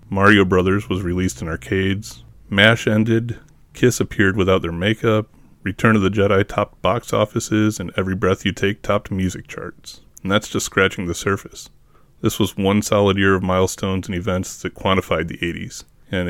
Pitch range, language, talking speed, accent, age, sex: 90-105 Hz, English, 175 wpm, American, 30-49, male